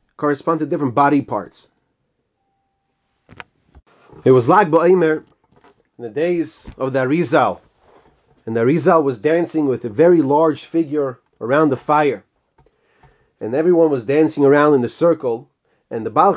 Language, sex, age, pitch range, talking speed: English, male, 30-49, 140-170 Hz, 145 wpm